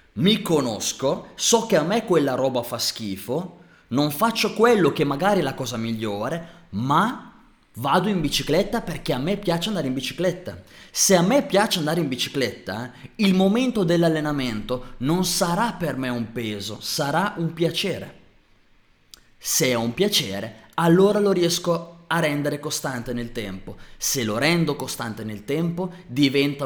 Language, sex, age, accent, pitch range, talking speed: Italian, male, 20-39, native, 120-180 Hz, 160 wpm